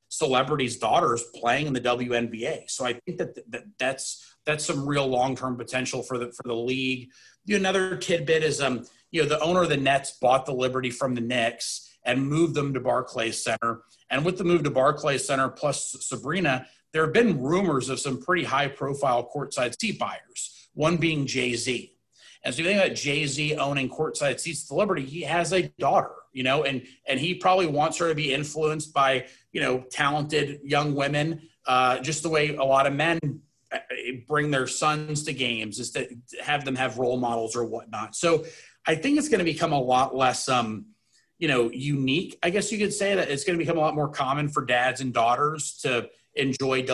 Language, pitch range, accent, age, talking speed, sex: English, 130-155 Hz, American, 30-49, 205 wpm, male